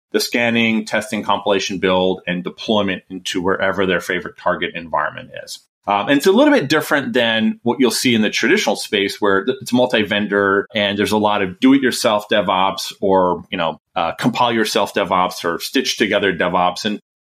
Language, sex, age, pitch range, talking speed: English, male, 30-49, 95-120 Hz, 190 wpm